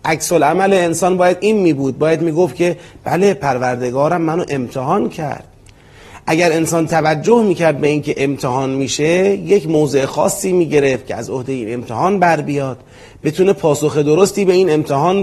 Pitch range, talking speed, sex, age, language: 135-180 Hz, 150 wpm, male, 30-49, Persian